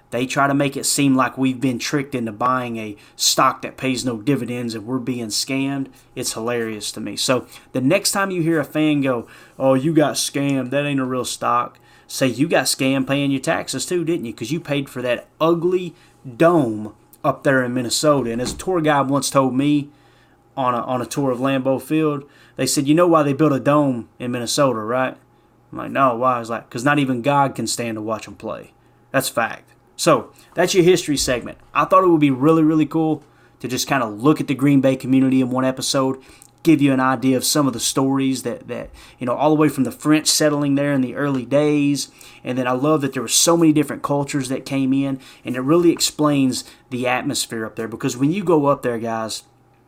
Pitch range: 125-145 Hz